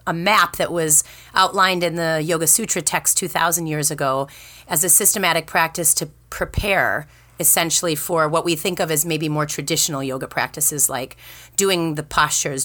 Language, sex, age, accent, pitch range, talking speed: English, female, 30-49, American, 145-175 Hz, 165 wpm